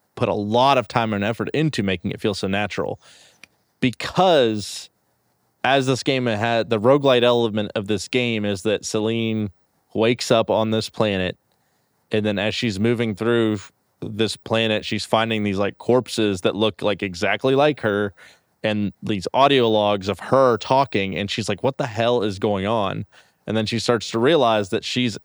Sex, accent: male, American